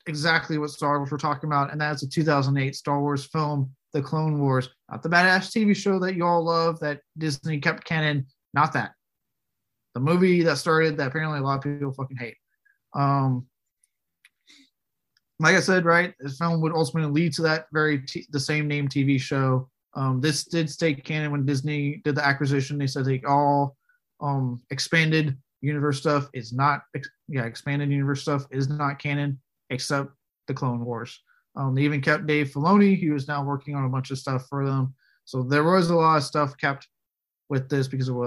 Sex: male